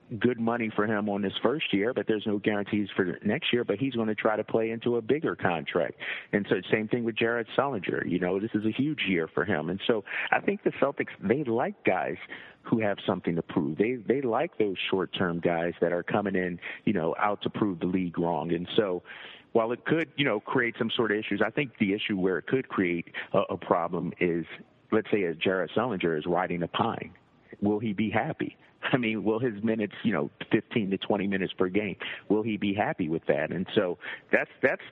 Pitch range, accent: 90-115 Hz, American